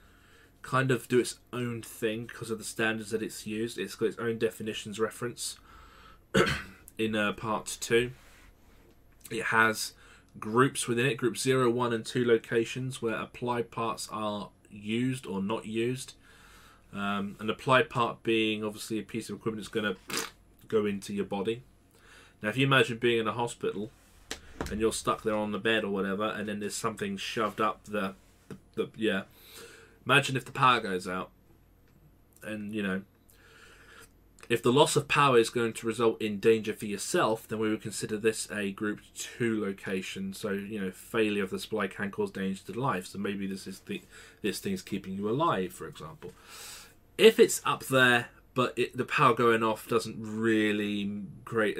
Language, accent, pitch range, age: English, British, 95-115 Hz, 20-39